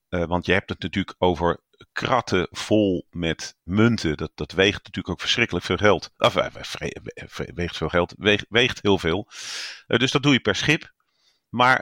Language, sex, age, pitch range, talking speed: Dutch, male, 40-59, 90-105 Hz, 155 wpm